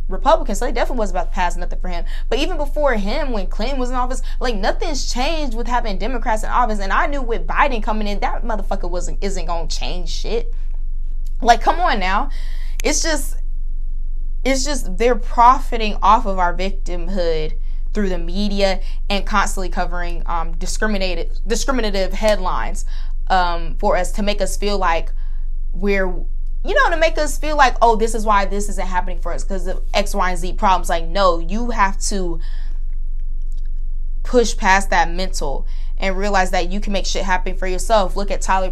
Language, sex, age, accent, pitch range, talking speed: English, female, 20-39, American, 180-220 Hz, 185 wpm